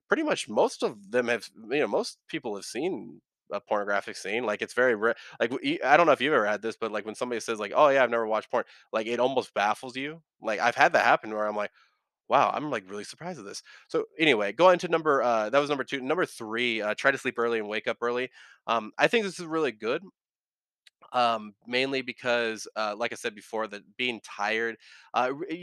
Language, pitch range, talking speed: English, 105-125 Hz, 235 wpm